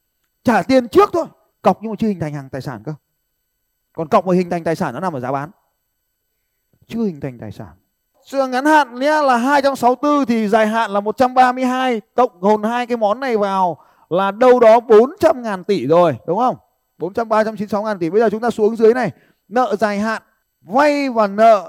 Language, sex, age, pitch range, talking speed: Vietnamese, male, 20-39, 155-235 Hz, 210 wpm